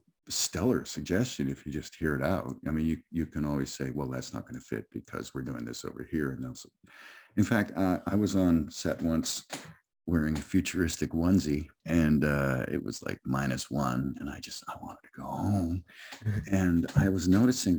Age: 50-69